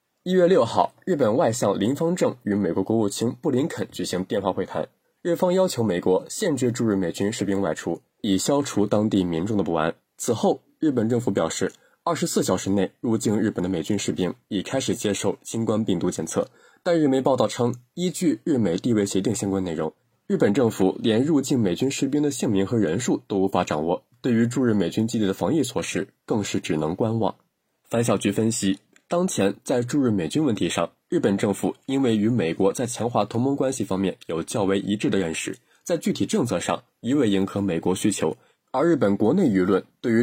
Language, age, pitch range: Chinese, 20-39, 95-120 Hz